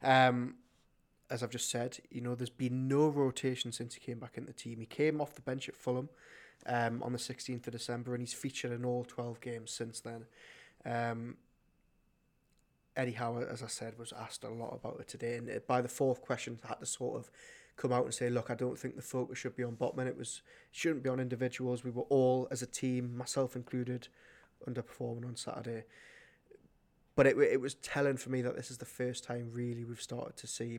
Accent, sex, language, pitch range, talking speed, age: British, male, English, 120-135 Hz, 220 wpm, 20-39